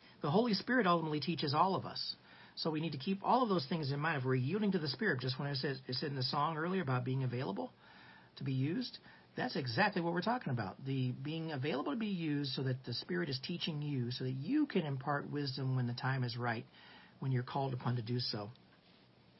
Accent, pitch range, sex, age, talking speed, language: American, 130-175 Hz, male, 40-59, 240 wpm, English